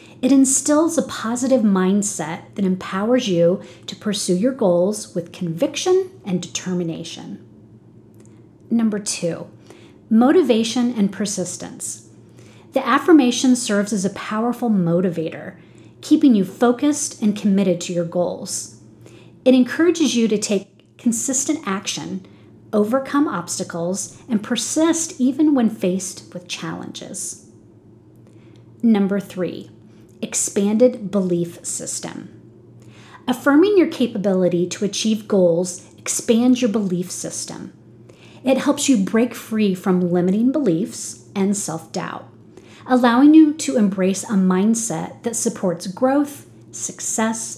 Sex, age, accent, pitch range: female, 40-59, American, 175-245 Hz